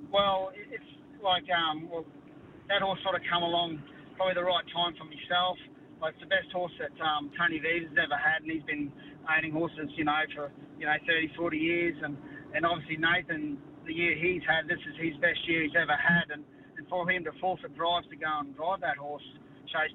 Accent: Australian